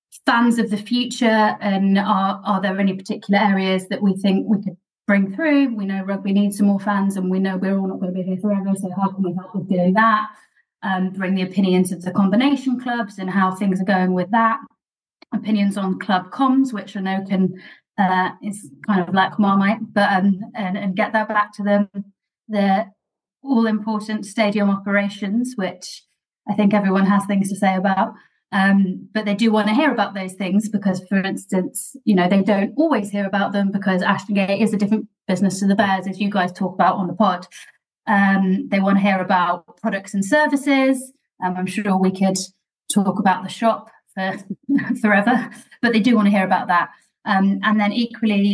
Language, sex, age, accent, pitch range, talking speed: English, female, 20-39, British, 190-215 Hz, 205 wpm